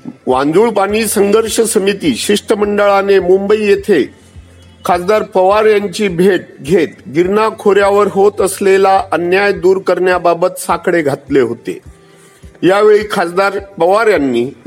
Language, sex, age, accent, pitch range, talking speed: Marathi, male, 50-69, native, 170-205 Hz, 55 wpm